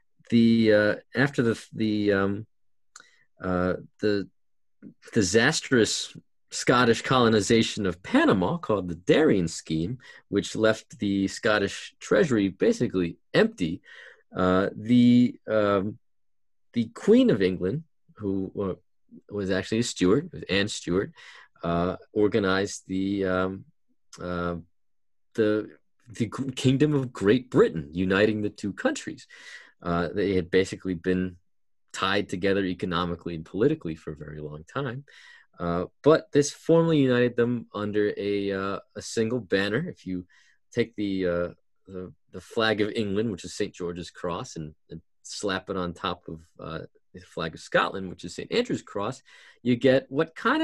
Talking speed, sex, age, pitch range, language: 140 wpm, male, 40-59, 90-120 Hz, English